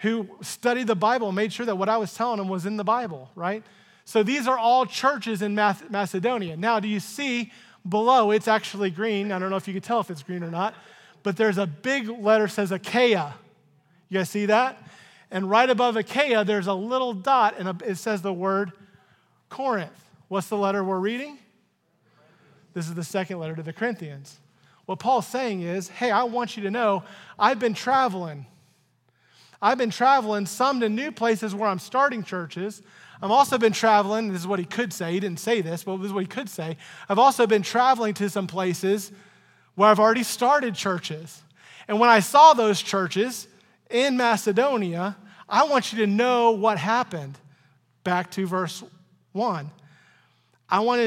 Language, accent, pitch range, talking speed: English, American, 185-230 Hz, 190 wpm